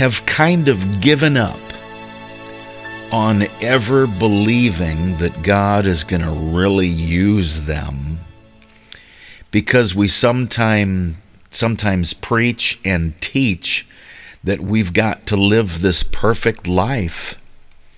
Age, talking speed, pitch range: 50-69, 95 wpm, 100-130 Hz